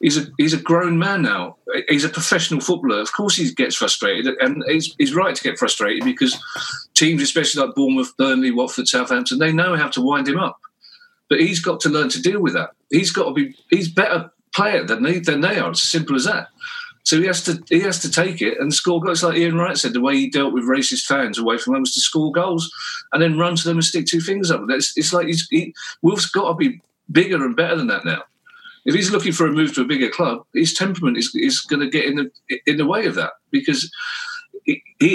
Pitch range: 160-255 Hz